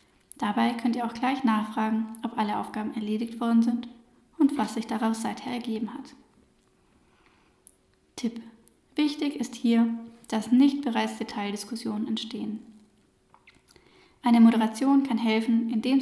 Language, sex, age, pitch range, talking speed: German, female, 10-29, 225-255 Hz, 125 wpm